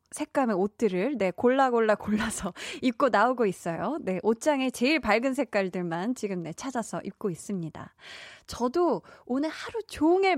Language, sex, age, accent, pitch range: Korean, female, 20-39, native, 190-280 Hz